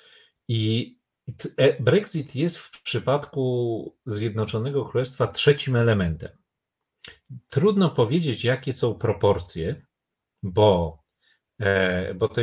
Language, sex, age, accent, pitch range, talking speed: Polish, male, 40-59, native, 100-130 Hz, 75 wpm